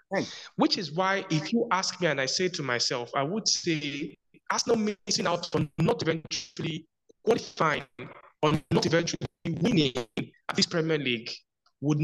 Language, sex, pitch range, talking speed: English, male, 150-210 Hz, 155 wpm